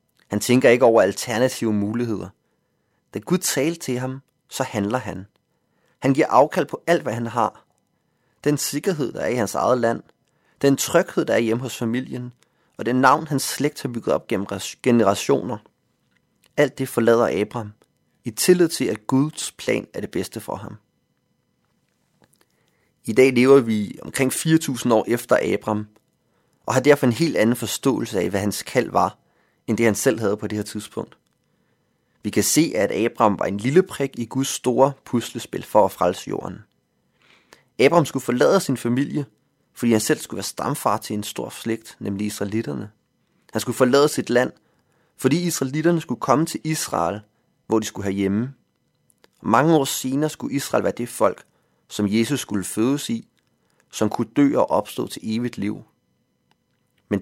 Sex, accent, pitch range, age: male, native, 110-140 Hz, 30-49